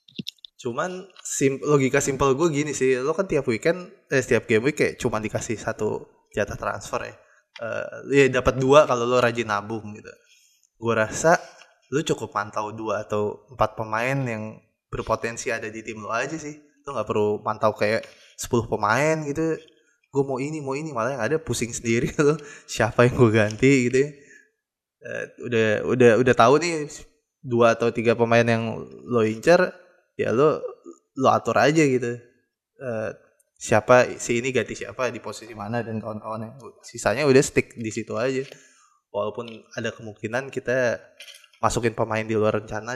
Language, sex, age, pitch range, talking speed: Indonesian, male, 20-39, 110-140 Hz, 165 wpm